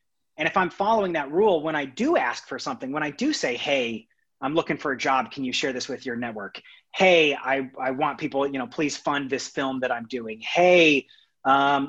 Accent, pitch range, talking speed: American, 140-180 Hz, 225 wpm